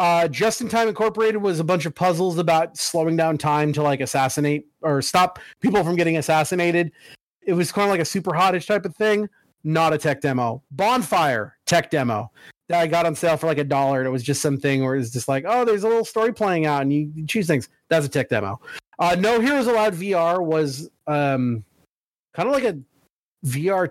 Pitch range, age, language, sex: 150-195 Hz, 30-49, English, male